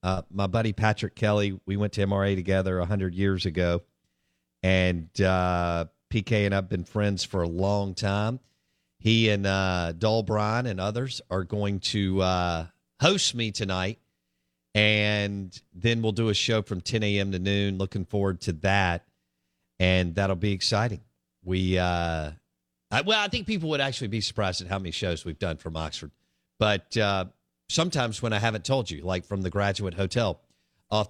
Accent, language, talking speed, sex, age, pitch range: American, English, 170 wpm, male, 50-69, 85-105 Hz